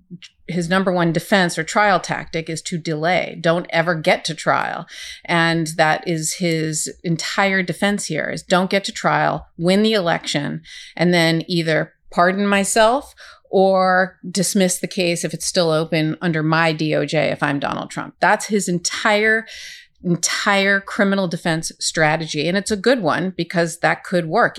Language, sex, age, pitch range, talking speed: English, female, 40-59, 165-205 Hz, 160 wpm